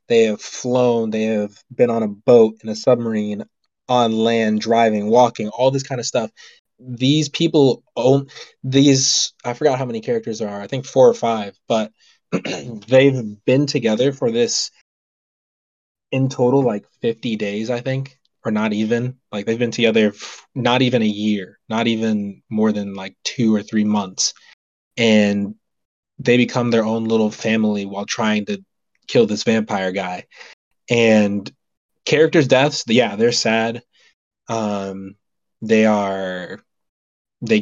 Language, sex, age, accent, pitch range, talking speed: English, male, 20-39, American, 105-125 Hz, 150 wpm